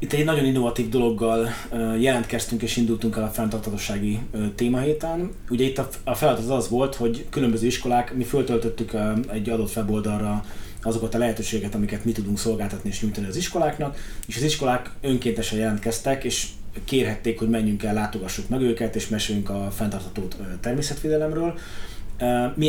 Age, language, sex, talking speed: 20-39, Hungarian, male, 150 wpm